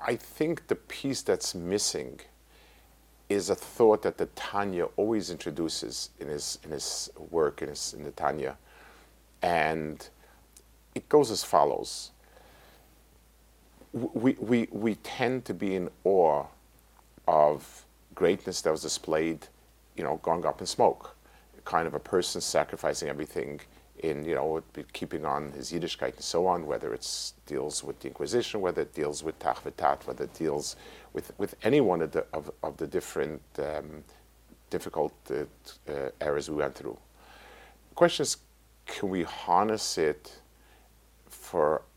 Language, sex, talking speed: English, male, 150 wpm